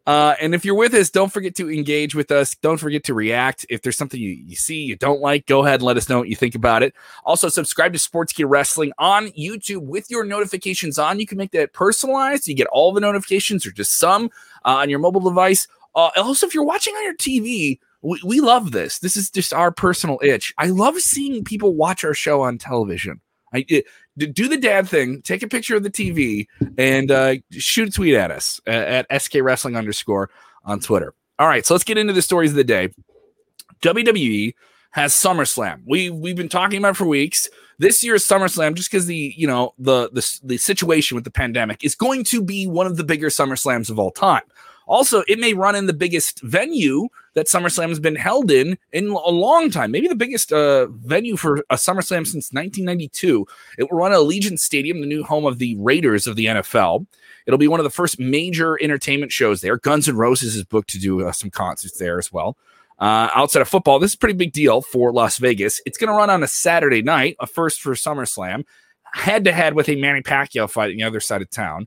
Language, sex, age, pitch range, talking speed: English, male, 20-39, 135-200 Hz, 225 wpm